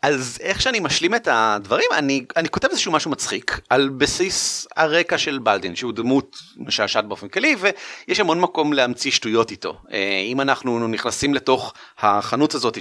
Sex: male